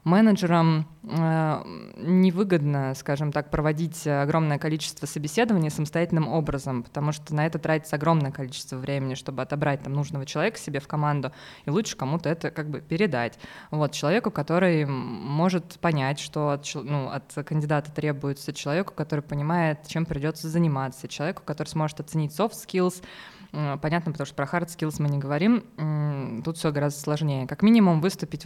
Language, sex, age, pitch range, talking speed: Russian, female, 20-39, 145-170 Hz, 155 wpm